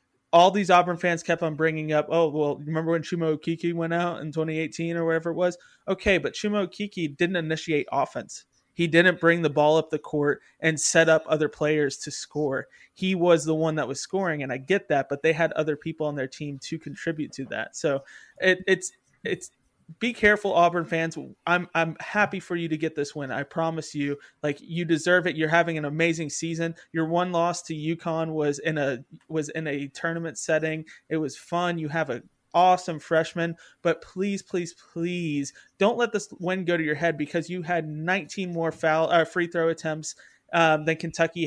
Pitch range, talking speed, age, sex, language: 150-170 Hz, 205 wpm, 20-39, male, English